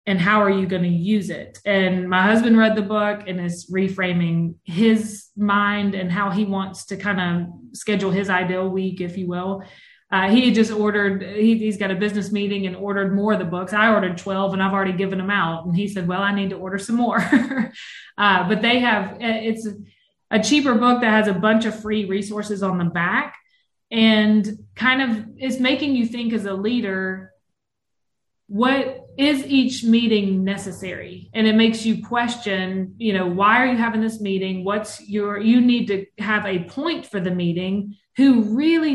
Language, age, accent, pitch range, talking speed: English, 20-39, American, 190-220 Hz, 195 wpm